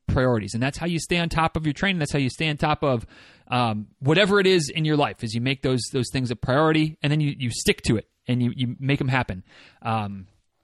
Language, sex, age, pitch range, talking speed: English, male, 30-49, 120-165 Hz, 265 wpm